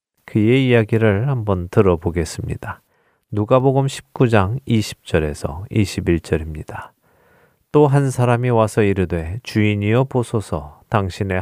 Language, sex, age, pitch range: Korean, male, 40-59, 100-130 Hz